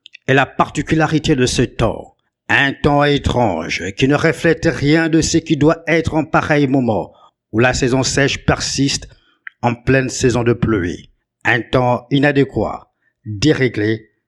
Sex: male